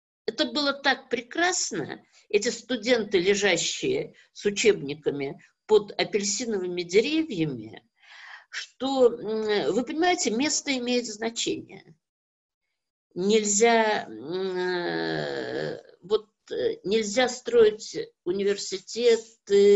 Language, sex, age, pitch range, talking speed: Russian, female, 50-69, 190-270 Hz, 65 wpm